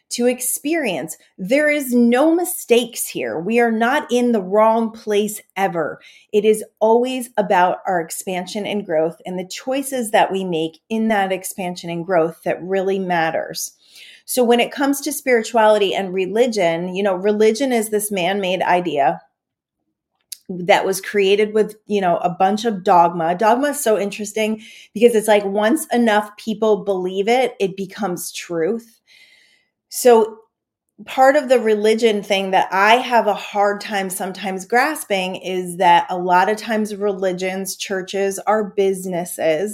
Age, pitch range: 30-49, 190-230 Hz